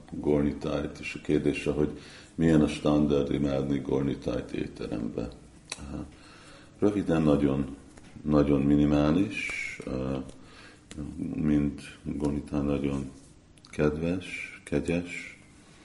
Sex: male